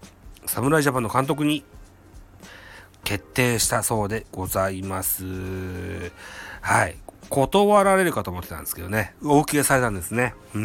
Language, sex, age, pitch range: Japanese, male, 40-59, 95-120 Hz